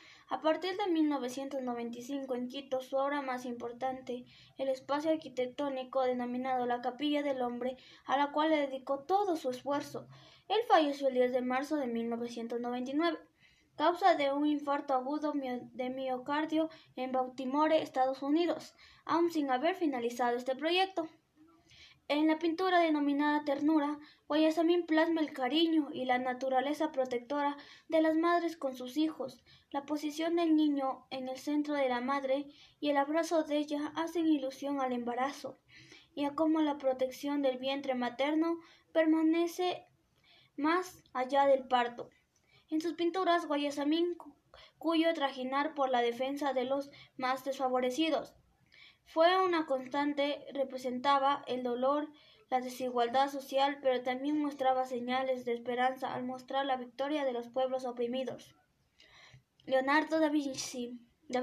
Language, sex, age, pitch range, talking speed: Spanish, female, 20-39, 255-310 Hz, 140 wpm